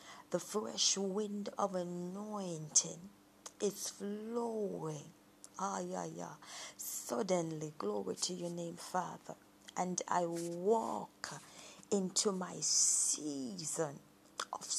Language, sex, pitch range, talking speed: English, female, 165-210 Hz, 95 wpm